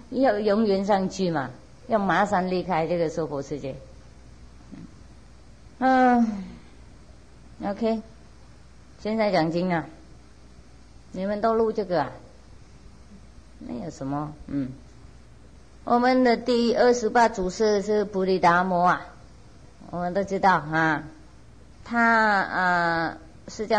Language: English